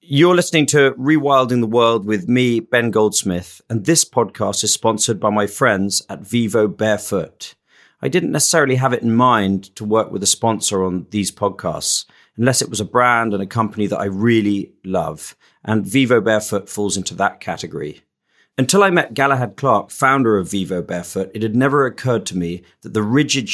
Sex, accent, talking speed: male, British, 185 wpm